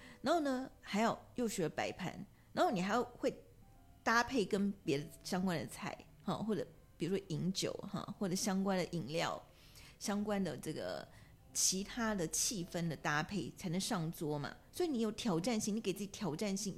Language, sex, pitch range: Chinese, female, 165-215 Hz